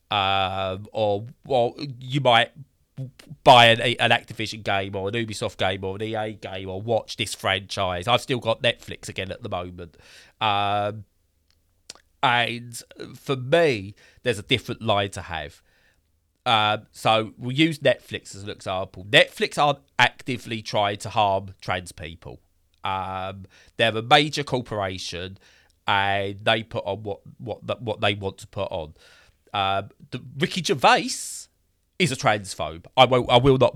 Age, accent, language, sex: 30-49, British, English, male